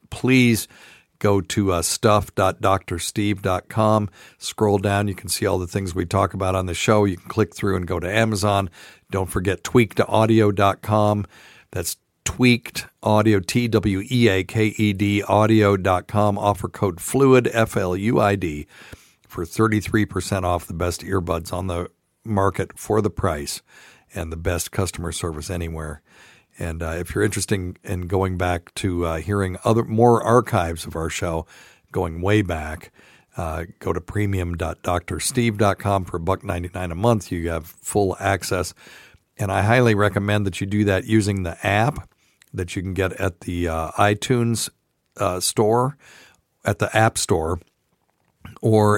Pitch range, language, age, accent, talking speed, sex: 90-105 Hz, English, 50-69, American, 145 wpm, male